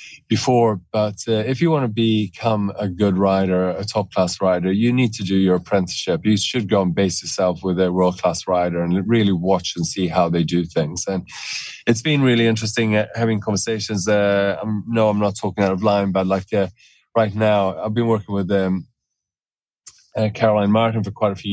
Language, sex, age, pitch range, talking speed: English, male, 20-39, 95-110 Hz, 205 wpm